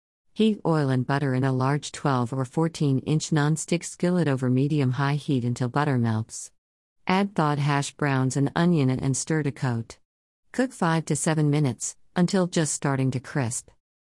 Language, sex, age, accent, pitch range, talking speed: English, female, 50-69, American, 130-160 Hz, 165 wpm